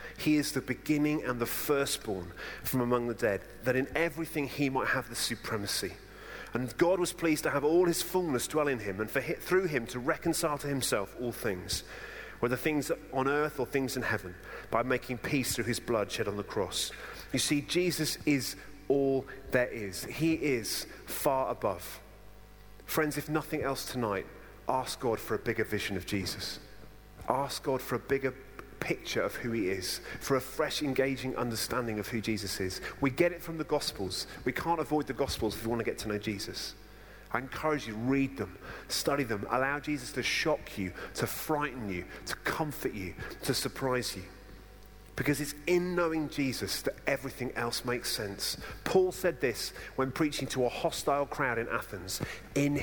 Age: 30-49